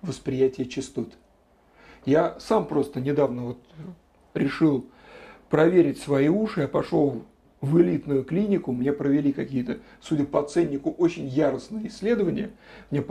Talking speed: 115 wpm